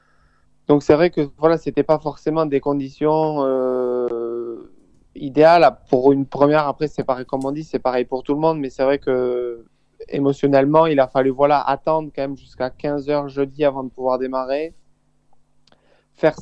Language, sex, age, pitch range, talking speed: French, male, 20-39, 130-150 Hz, 170 wpm